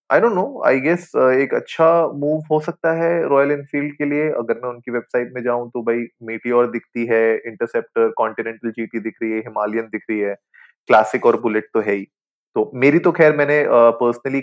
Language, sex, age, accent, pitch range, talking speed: Hindi, male, 20-39, native, 115-150 Hz, 205 wpm